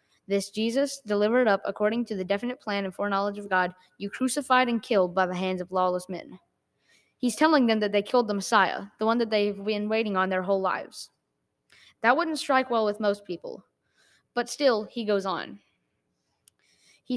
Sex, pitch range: female, 195-245 Hz